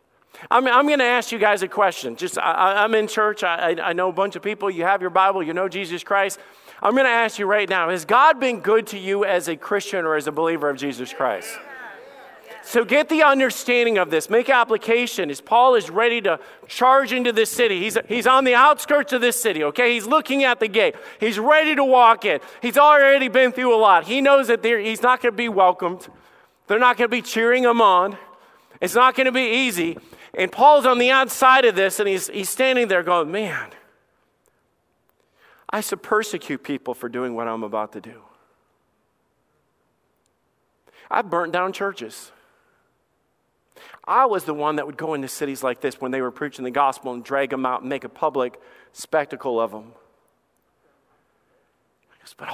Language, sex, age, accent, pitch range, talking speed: English, male, 40-59, American, 170-245 Hz, 200 wpm